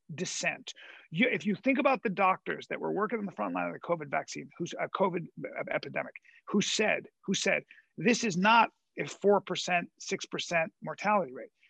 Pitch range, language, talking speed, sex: 180-220 Hz, English, 180 wpm, male